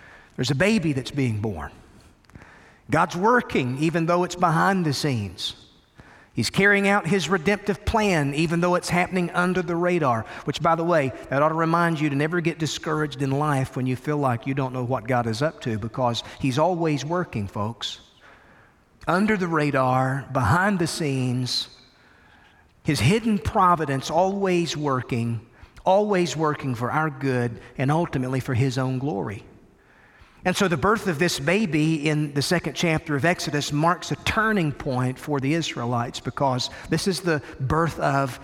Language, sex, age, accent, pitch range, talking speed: English, male, 40-59, American, 130-170 Hz, 165 wpm